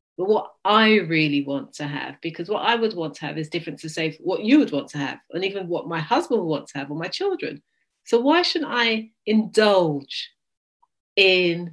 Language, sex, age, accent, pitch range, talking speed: English, female, 40-59, British, 165-220 Hz, 220 wpm